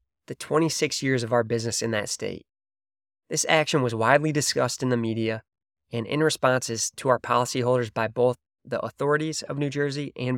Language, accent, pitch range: English, American, 110-130 Hz